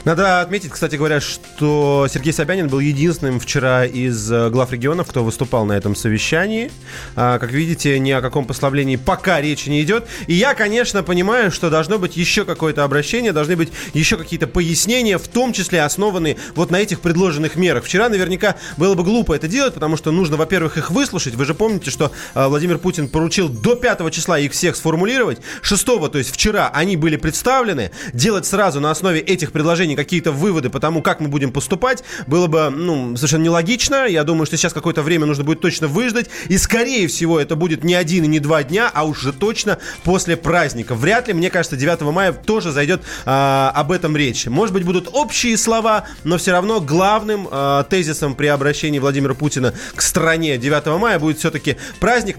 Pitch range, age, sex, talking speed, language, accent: 145-190 Hz, 30-49, male, 190 wpm, Russian, native